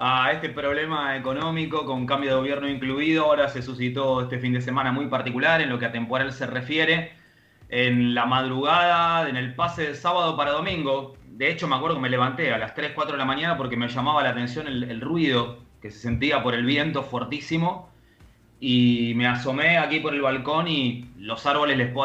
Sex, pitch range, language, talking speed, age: male, 125-150 Hz, Spanish, 205 wpm, 30-49